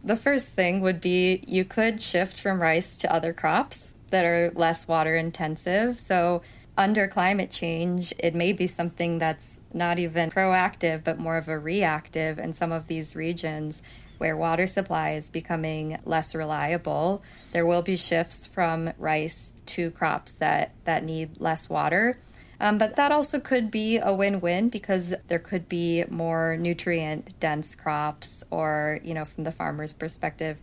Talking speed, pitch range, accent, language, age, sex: 160 wpm, 160-185 Hz, American, English, 20-39, female